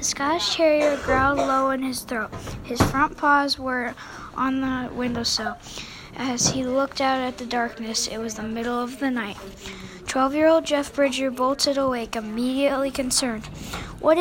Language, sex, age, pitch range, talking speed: English, female, 10-29, 240-280 Hz, 155 wpm